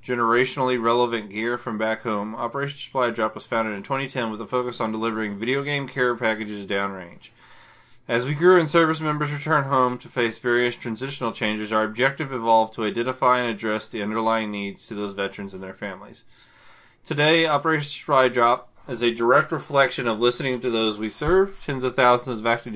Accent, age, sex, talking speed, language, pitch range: American, 20-39, male, 185 wpm, English, 110-130 Hz